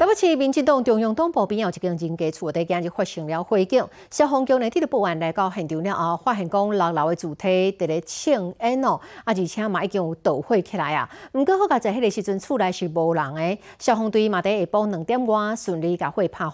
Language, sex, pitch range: Chinese, female, 175-245 Hz